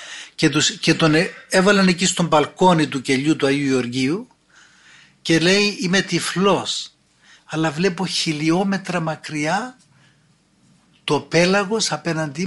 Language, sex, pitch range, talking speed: Greek, male, 160-195 Hz, 110 wpm